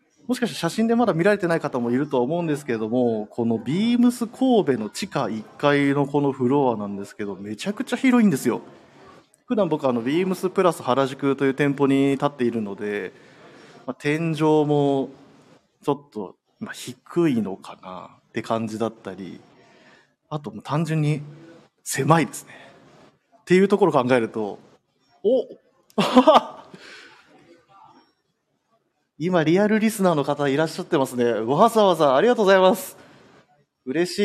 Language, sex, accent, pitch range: Japanese, male, native, 125-185 Hz